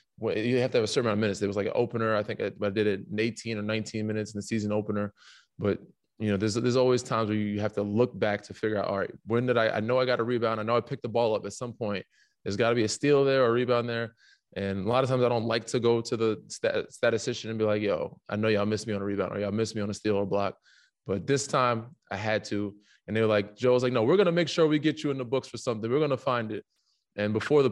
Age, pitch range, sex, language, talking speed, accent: 20-39, 100-115 Hz, male, English, 320 wpm, American